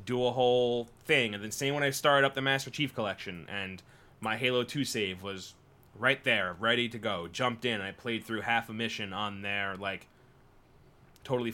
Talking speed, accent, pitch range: 205 wpm, American, 115-130 Hz